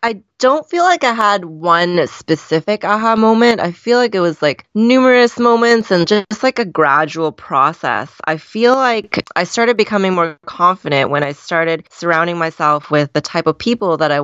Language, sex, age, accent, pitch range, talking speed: English, female, 20-39, American, 150-205 Hz, 185 wpm